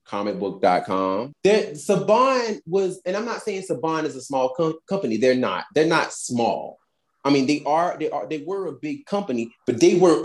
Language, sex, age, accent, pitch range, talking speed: English, male, 30-49, American, 155-225 Hz, 195 wpm